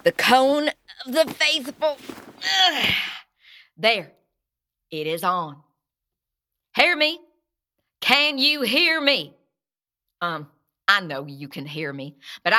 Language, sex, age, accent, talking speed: English, female, 50-69, American, 110 wpm